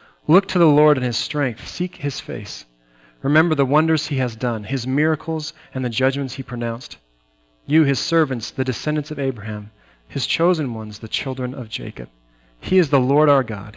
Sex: male